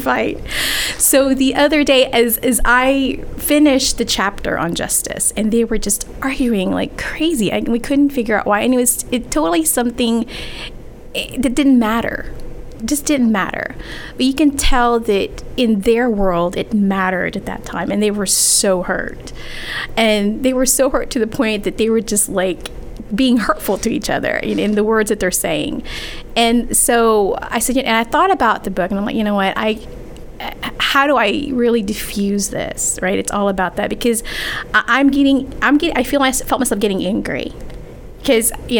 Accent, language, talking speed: American, English, 190 wpm